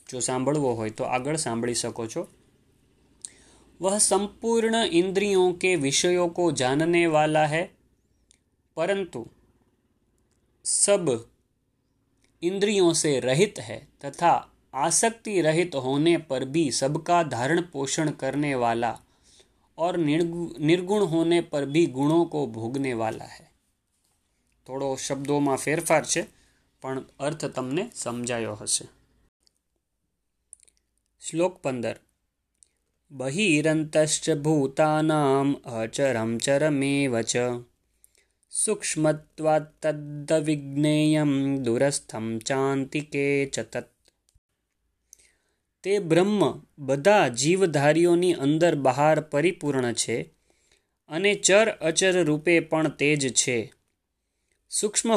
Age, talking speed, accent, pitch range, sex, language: 30-49, 85 wpm, native, 130-170 Hz, male, Gujarati